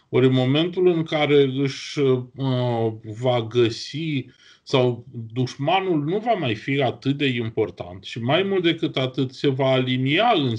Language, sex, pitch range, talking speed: Romanian, male, 120-165 Hz, 155 wpm